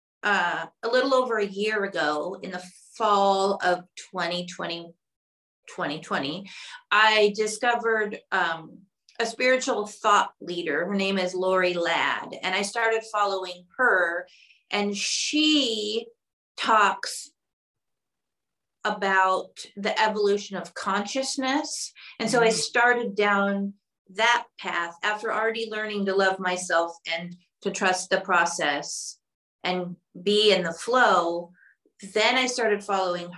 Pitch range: 180-225 Hz